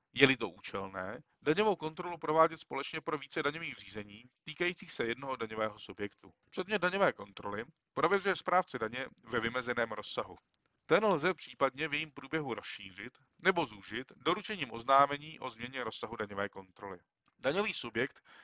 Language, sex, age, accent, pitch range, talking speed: Czech, male, 40-59, native, 130-170 Hz, 140 wpm